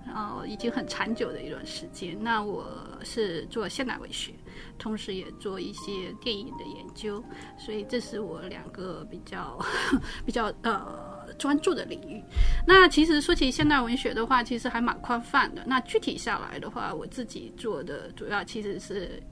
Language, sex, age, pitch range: English, female, 20-39, 220-270 Hz